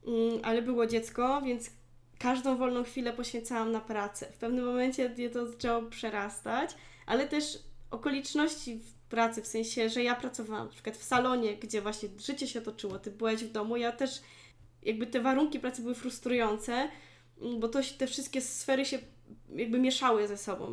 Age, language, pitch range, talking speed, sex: 10-29, Polish, 225-255 Hz, 160 wpm, female